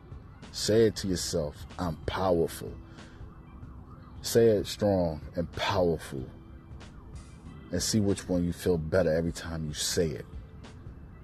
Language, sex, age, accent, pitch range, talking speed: English, male, 40-59, American, 80-90 Hz, 125 wpm